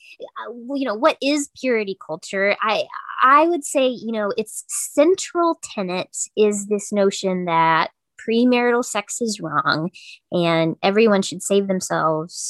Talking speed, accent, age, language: 135 wpm, American, 20-39, English